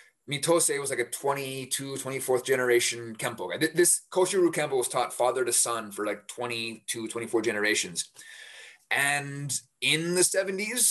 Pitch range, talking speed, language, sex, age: 120-170 Hz, 145 wpm, English, male, 30-49